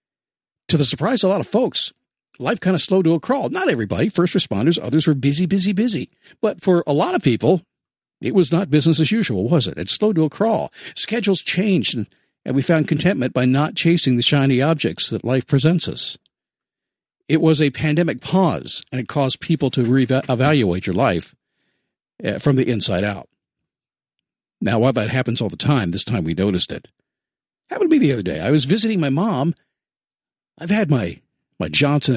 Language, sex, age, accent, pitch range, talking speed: English, male, 50-69, American, 130-185 Hz, 195 wpm